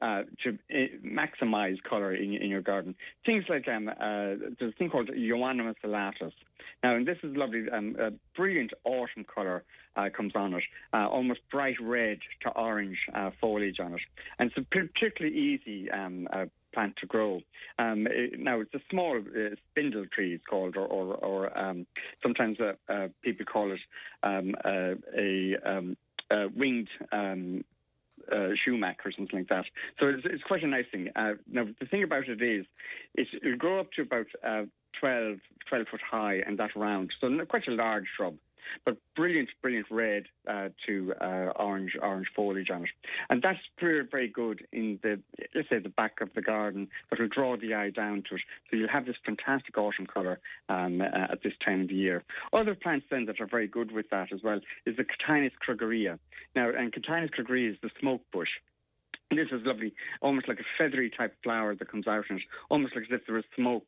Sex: male